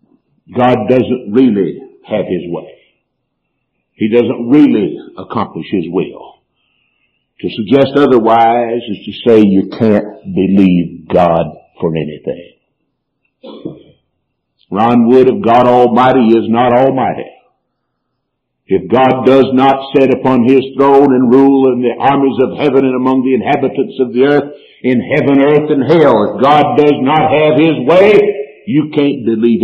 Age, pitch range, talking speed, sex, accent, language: 60-79, 110-135 Hz, 140 wpm, male, American, English